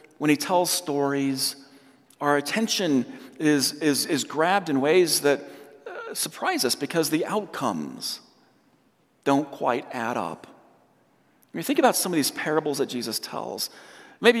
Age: 50-69